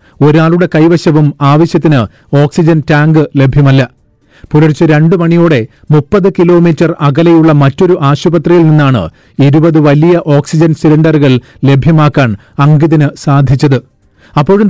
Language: Malayalam